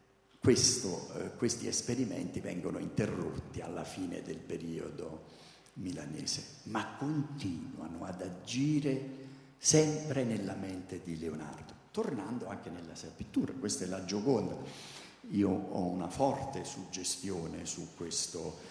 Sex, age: male, 50-69